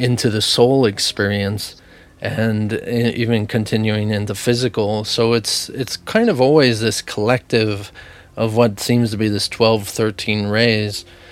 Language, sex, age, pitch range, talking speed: English, male, 30-49, 105-120 Hz, 145 wpm